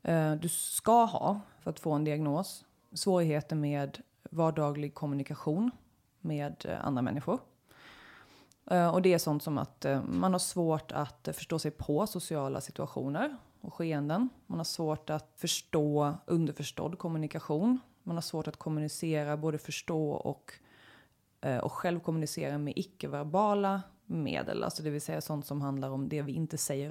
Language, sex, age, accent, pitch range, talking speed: Swedish, female, 20-39, native, 145-175 Hz, 145 wpm